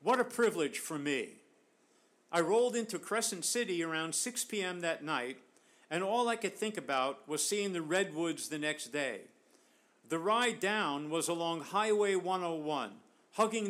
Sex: male